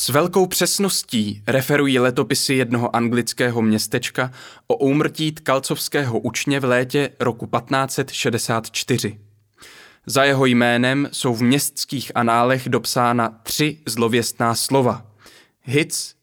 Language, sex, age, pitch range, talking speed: Czech, male, 20-39, 115-145 Hz, 105 wpm